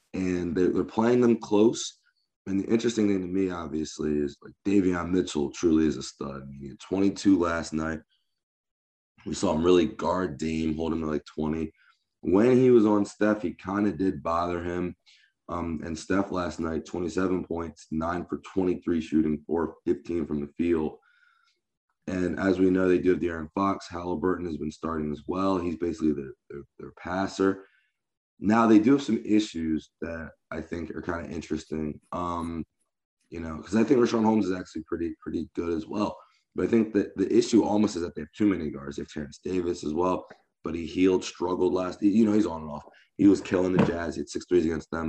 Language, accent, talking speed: English, American, 210 wpm